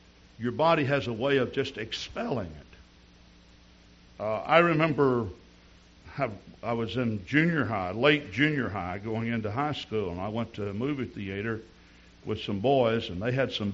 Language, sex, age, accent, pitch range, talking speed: English, male, 60-79, American, 90-125 Hz, 165 wpm